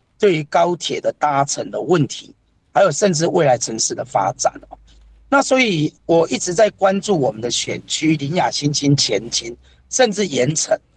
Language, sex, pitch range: Chinese, male, 140-210 Hz